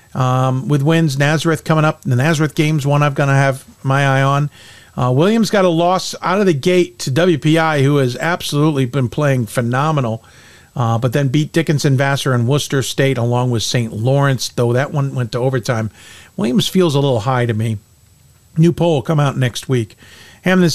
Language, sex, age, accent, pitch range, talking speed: English, male, 50-69, American, 130-175 Hz, 195 wpm